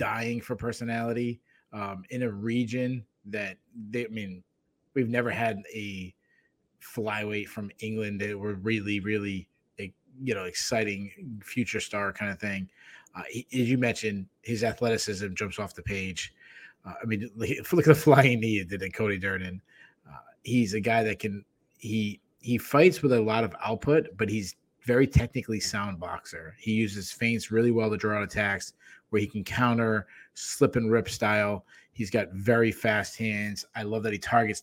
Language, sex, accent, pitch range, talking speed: English, male, American, 105-120 Hz, 175 wpm